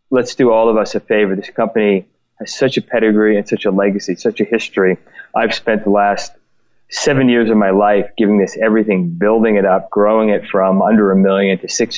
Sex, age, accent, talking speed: male, 30-49, American, 215 wpm